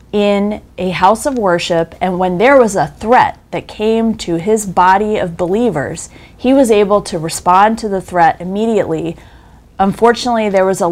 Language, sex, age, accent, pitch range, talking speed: English, female, 30-49, American, 175-215 Hz, 170 wpm